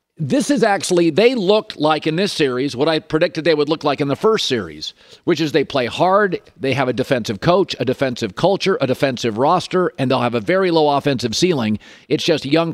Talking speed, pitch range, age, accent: 220 wpm, 140-175 Hz, 50-69, American